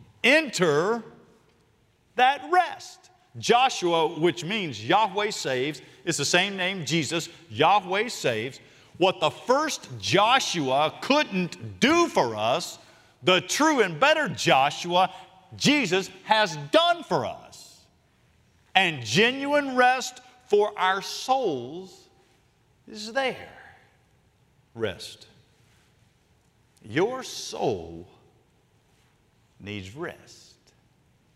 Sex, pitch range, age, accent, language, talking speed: male, 135-205 Hz, 50-69, American, English, 90 wpm